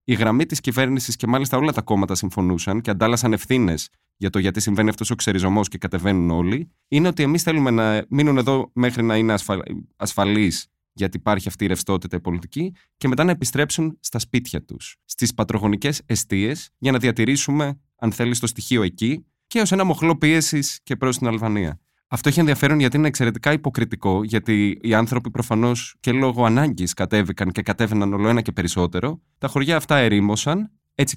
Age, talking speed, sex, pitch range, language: 20-39, 180 wpm, male, 100-150 Hz, Greek